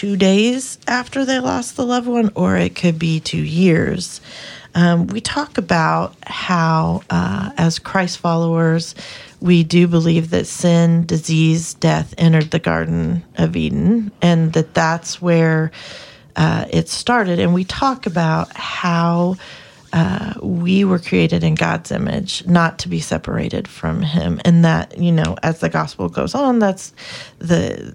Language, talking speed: English, 150 wpm